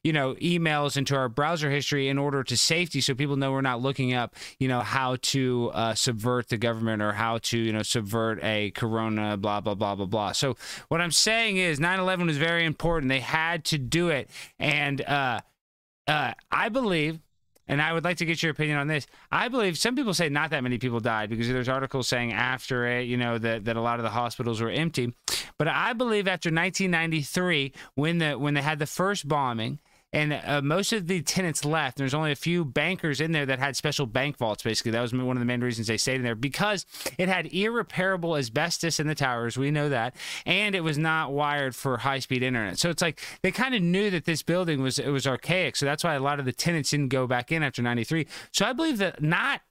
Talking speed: 230 wpm